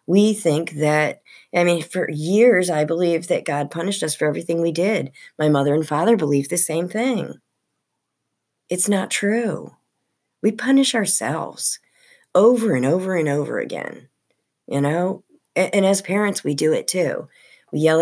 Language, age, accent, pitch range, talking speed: English, 40-59, American, 150-235 Hz, 165 wpm